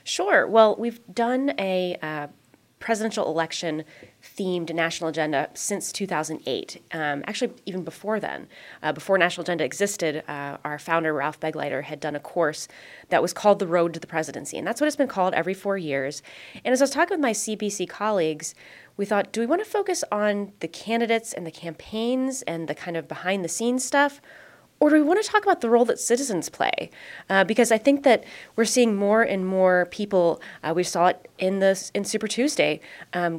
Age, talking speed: 20-39, 195 wpm